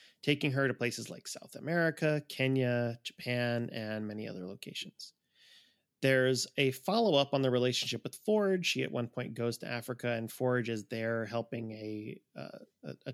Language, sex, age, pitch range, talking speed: English, male, 30-49, 115-135 Hz, 170 wpm